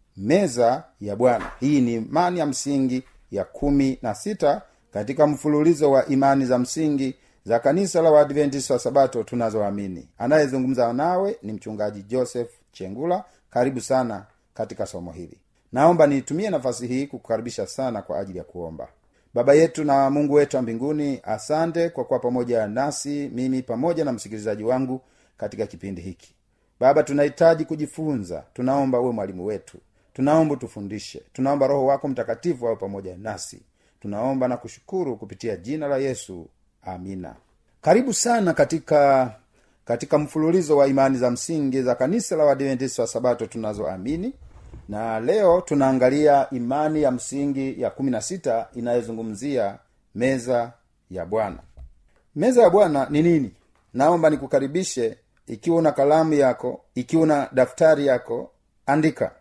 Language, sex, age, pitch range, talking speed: Swahili, male, 40-59, 115-150 Hz, 135 wpm